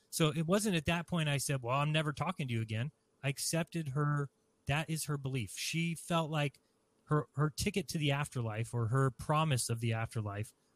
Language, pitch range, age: English, 125-160 Hz, 30-49